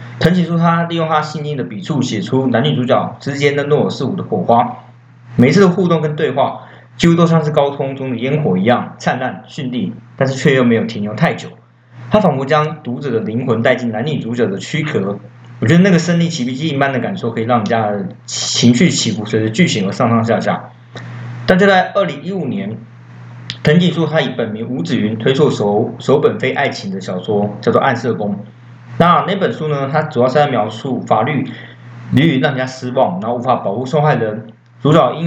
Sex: male